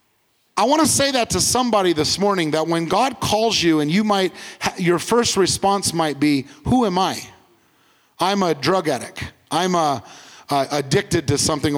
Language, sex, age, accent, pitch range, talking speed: English, male, 30-49, American, 165-225 Hz, 180 wpm